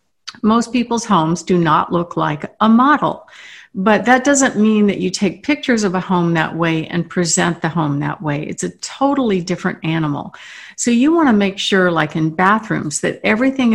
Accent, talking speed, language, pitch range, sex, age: American, 190 wpm, English, 165-215 Hz, female, 50-69